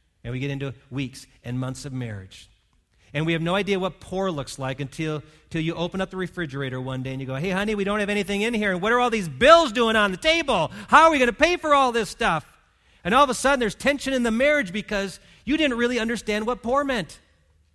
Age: 40-59